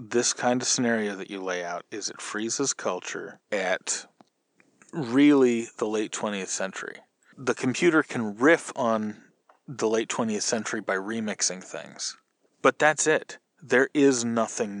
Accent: American